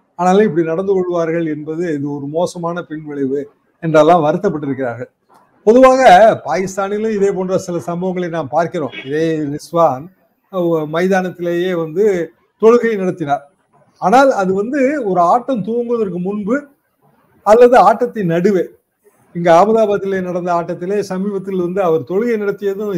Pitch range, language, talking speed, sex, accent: 155-200 Hz, Tamil, 115 wpm, male, native